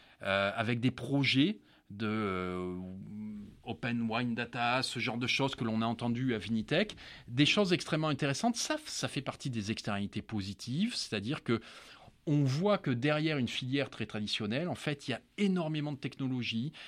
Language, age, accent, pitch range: French, 30-49, French, 115-155 Hz